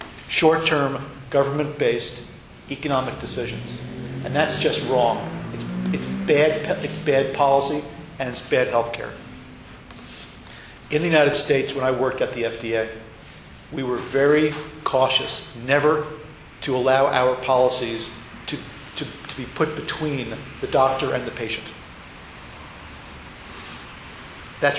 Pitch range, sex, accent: 120-145 Hz, male, American